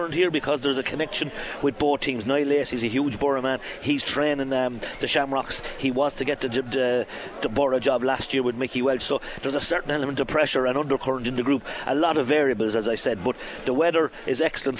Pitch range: 120-140 Hz